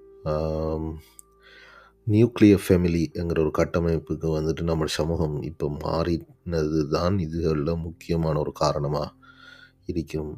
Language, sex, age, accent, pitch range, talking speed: Tamil, male, 30-49, native, 80-90 Hz, 85 wpm